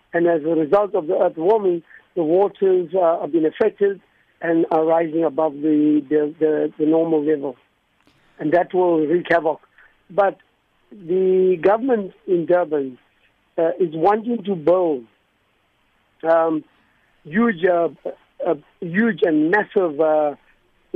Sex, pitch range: male, 160-190 Hz